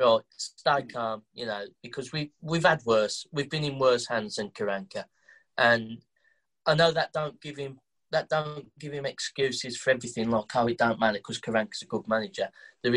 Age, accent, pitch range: 20-39, British, 110-145 Hz